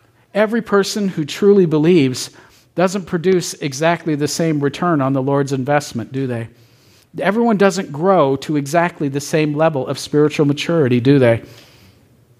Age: 50-69